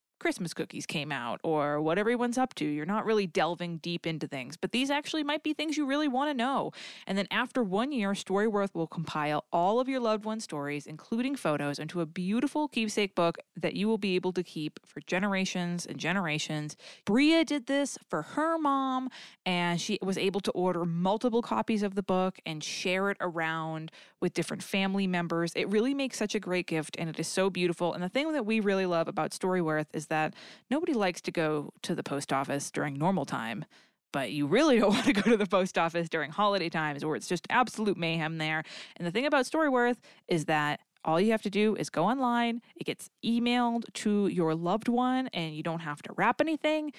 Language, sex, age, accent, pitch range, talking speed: English, female, 20-39, American, 165-230 Hz, 215 wpm